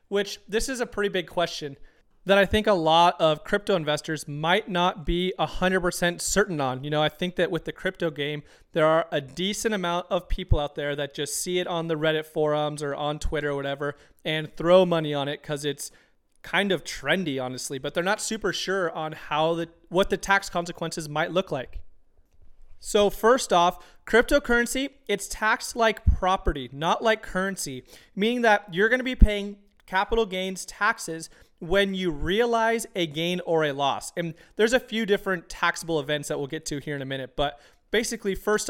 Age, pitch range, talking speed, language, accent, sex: 30-49, 155-200 Hz, 195 wpm, English, American, male